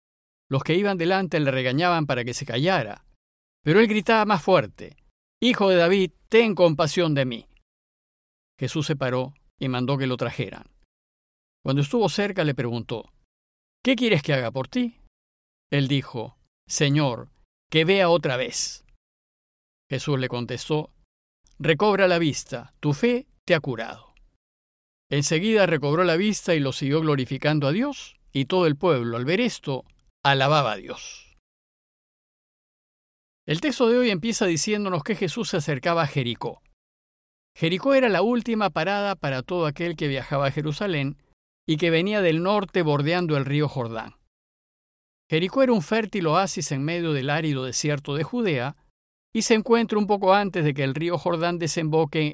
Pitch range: 130-190 Hz